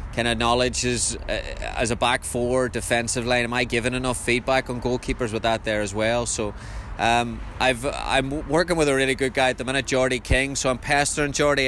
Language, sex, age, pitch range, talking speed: English, male, 20-39, 110-130 Hz, 220 wpm